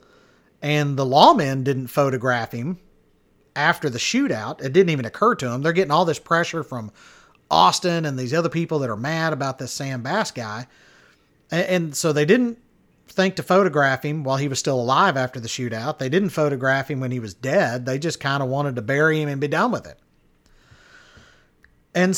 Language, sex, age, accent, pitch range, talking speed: English, male, 40-59, American, 125-170 Hz, 195 wpm